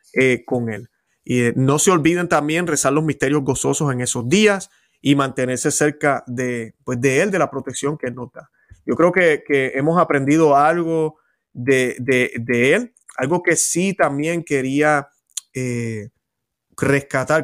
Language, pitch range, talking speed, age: Spanish, 130-160 Hz, 160 wpm, 30-49